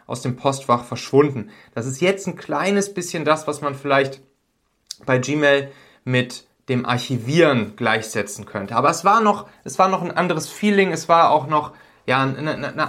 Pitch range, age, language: 125-185 Hz, 30-49, German